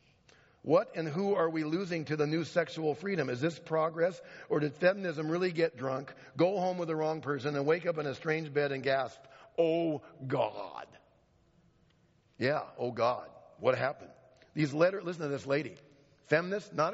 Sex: male